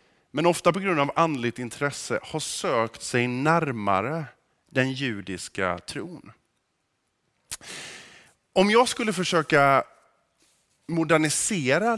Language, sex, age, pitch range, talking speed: Swedish, male, 20-39, 120-170 Hz, 95 wpm